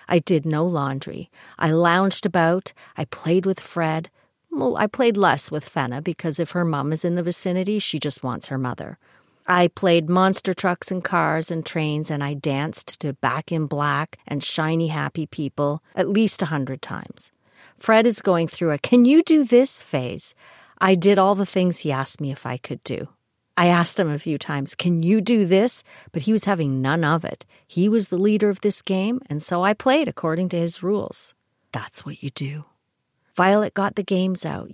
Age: 50-69